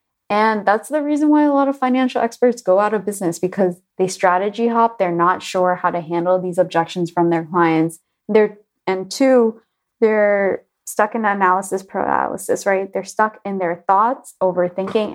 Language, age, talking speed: English, 20-39, 175 wpm